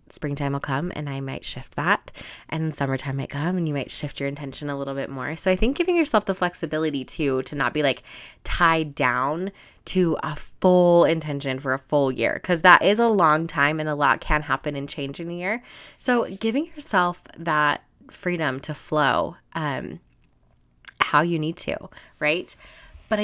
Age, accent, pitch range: 20-39, American, 140-180 Hz